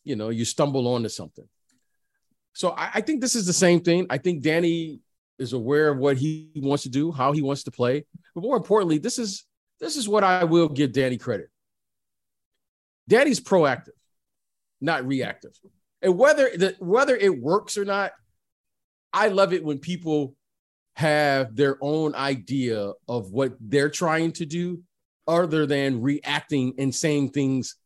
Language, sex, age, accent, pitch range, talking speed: English, male, 40-59, American, 135-175 Hz, 165 wpm